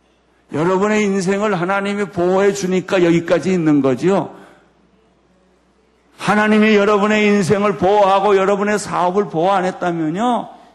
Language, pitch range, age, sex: Korean, 155-215 Hz, 50-69, male